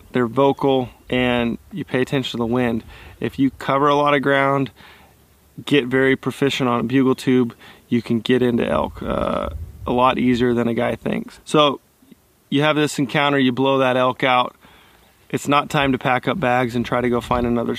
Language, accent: English, American